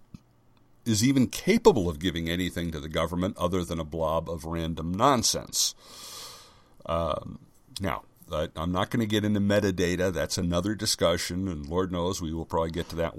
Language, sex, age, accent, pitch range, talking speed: English, male, 60-79, American, 80-100 Hz, 170 wpm